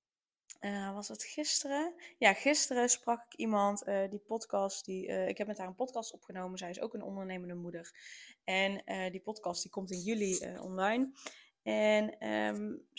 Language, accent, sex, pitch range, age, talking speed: Dutch, Dutch, female, 200-240 Hz, 10-29, 180 wpm